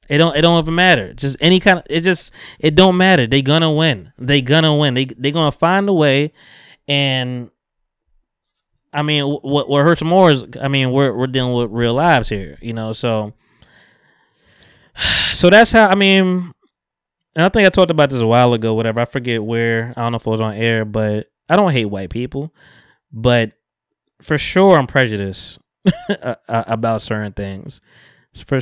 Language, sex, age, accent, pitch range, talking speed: English, male, 20-39, American, 115-165 Hz, 195 wpm